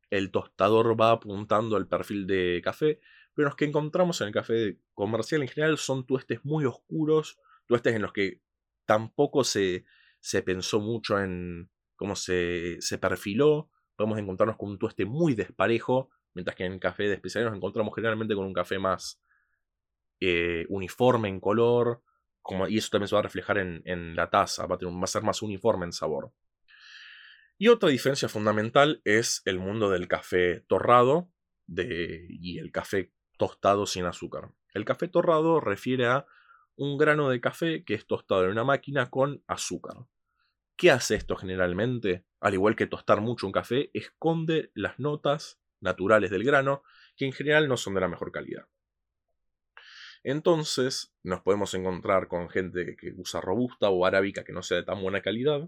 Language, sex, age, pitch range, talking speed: Spanish, male, 20-39, 95-135 Hz, 170 wpm